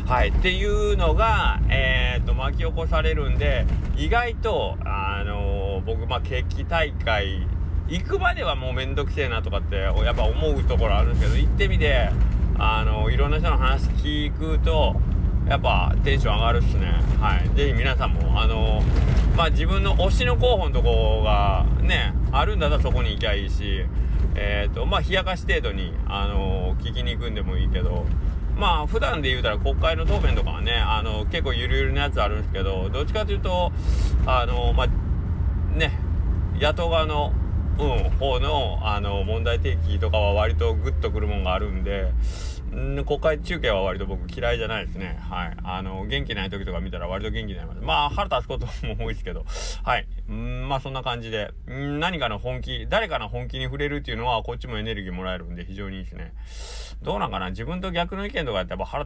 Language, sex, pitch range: Japanese, male, 80-105 Hz